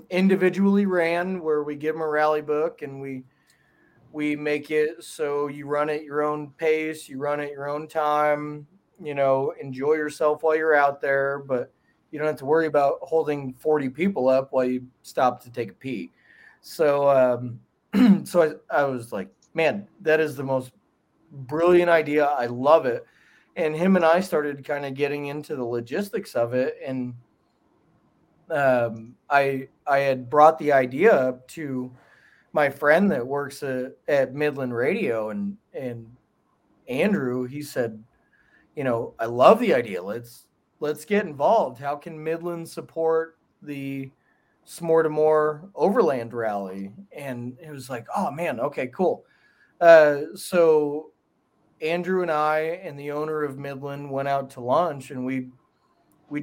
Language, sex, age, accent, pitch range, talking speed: English, male, 30-49, American, 130-155 Hz, 160 wpm